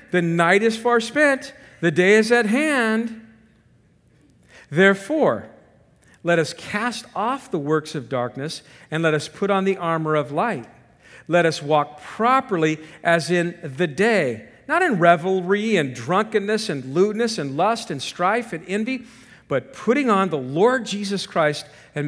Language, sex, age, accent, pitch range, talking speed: English, male, 50-69, American, 150-210 Hz, 155 wpm